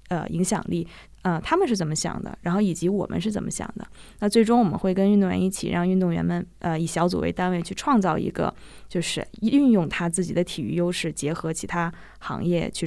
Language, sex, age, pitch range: Chinese, female, 20-39, 165-200 Hz